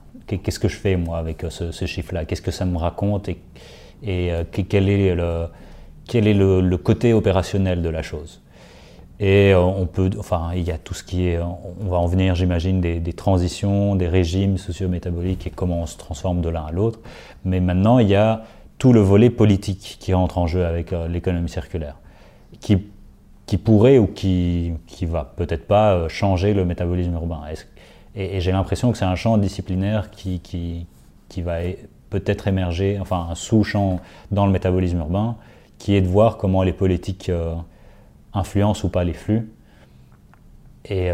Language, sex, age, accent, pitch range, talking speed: English, male, 30-49, French, 85-100 Hz, 185 wpm